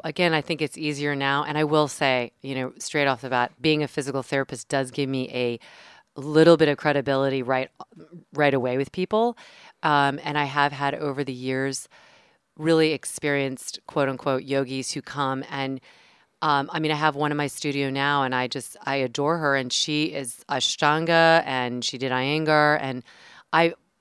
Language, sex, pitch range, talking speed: English, female, 135-165 Hz, 185 wpm